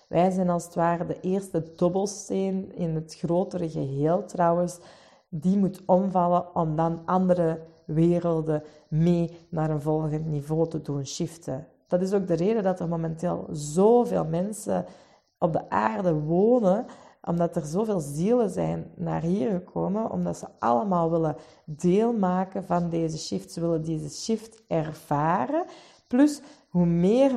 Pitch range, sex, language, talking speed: 160-195 Hz, female, Dutch, 145 wpm